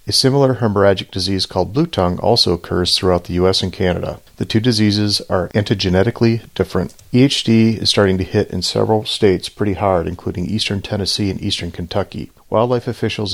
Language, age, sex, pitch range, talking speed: English, 40-59, male, 90-105 Hz, 170 wpm